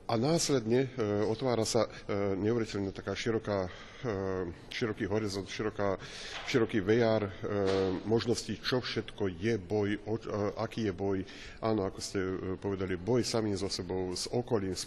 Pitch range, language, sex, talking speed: 100-115 Hz, Slovak, male, 150 wpm